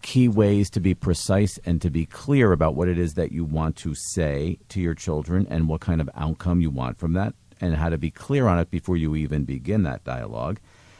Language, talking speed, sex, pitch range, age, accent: English, 235 wpm, male, 75-105 Hz, 50-69, American